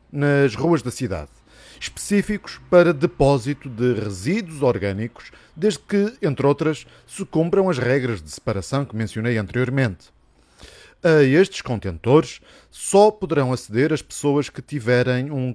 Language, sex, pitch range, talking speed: Portuguese, male, 110-165 Hz, 130 wpm